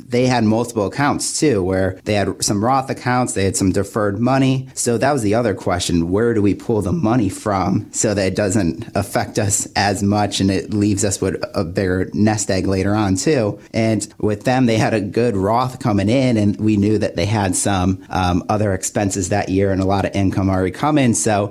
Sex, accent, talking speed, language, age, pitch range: male, American, 220 wpm, English, 30-49, 95-110 Hz